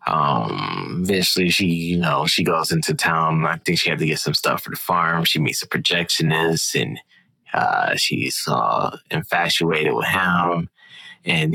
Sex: male